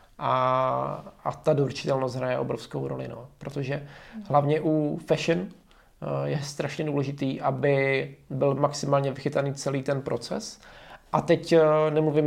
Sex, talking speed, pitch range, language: male, 120 wpm, 140-155 Hz, Czech